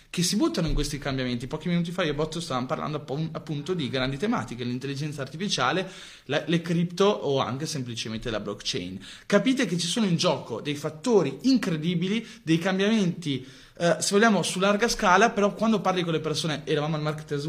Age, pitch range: 20-39, 140-195 Hz